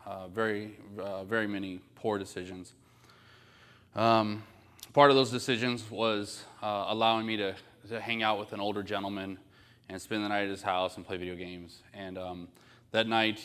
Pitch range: 95-110 Hz